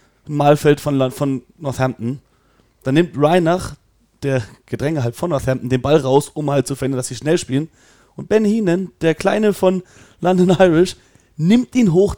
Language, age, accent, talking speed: German, 30-49, German, 170 wpm